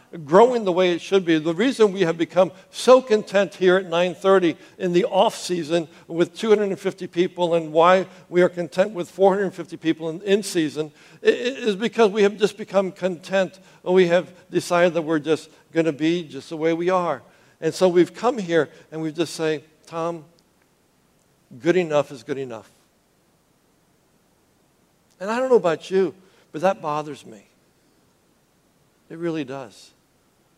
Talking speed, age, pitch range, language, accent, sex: 165 wpm, 60-79, 160-190 Hz, English, American, male